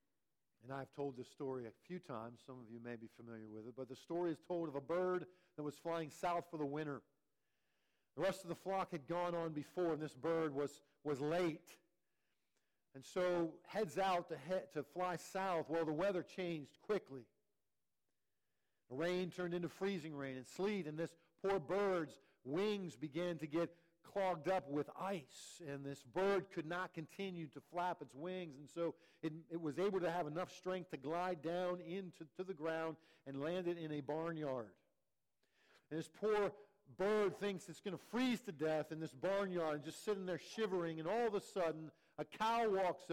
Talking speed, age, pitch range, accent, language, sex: 195 wpm, 50-69, 145-180 Hz, American, English, male